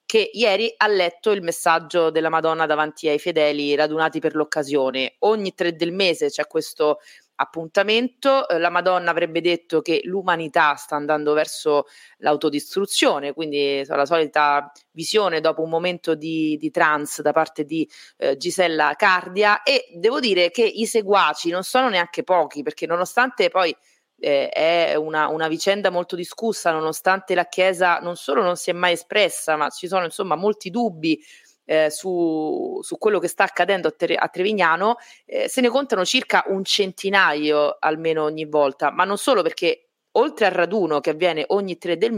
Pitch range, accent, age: 155-195 Hz, native, 30-49